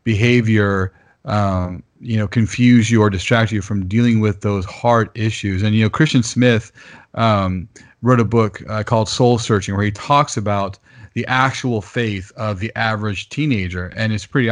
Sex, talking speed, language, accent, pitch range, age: male, 175 wpm, English, American, 105-125 Hz, 40-59